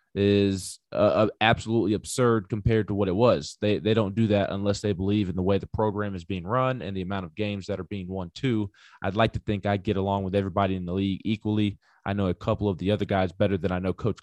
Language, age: English, 20-39